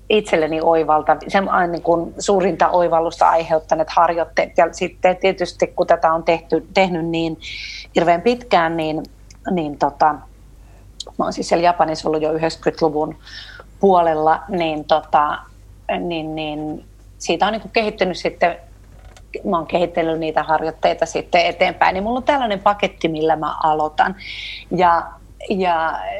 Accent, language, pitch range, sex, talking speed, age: native, Finnish, 160-195 Hz, female, 130 wpm, 40-59